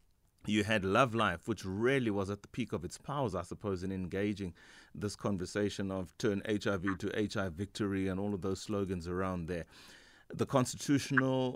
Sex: male